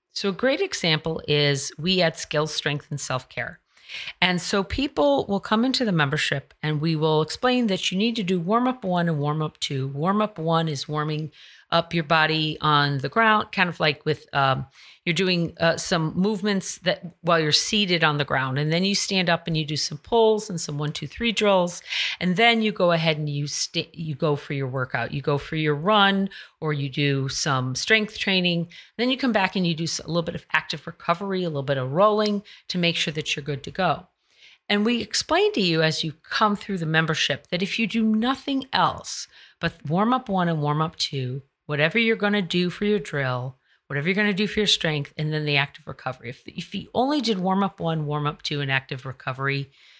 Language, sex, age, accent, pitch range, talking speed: English, female, 40-59, American, 150-205 Hz, 220 wpm